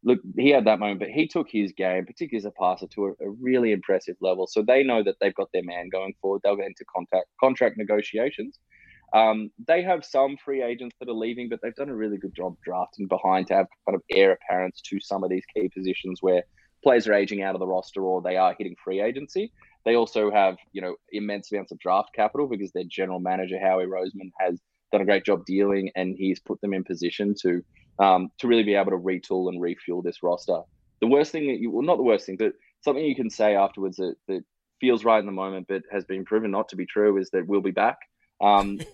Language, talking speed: English, 240 wpm